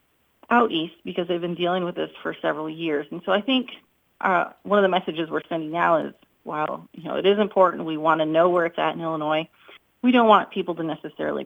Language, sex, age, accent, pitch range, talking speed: English, female, 30-49, American, 160-200 Hz, 225 wpm